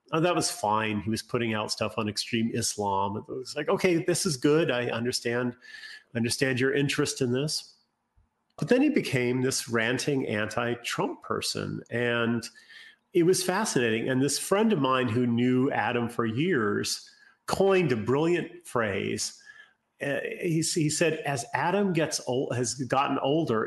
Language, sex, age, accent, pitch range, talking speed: English, male, 40-59, American, 120-160 Hz, 160 wpm